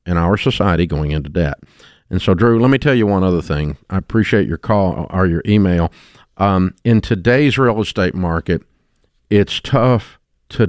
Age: 50-69